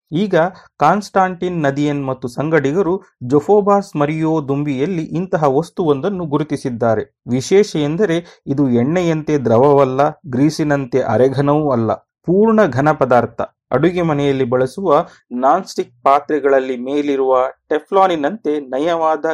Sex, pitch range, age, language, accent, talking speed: male, 135-175 Hz, 30-49, Kannada, native, 95 wpm